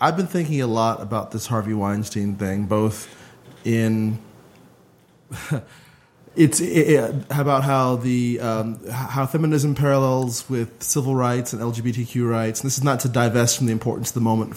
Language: English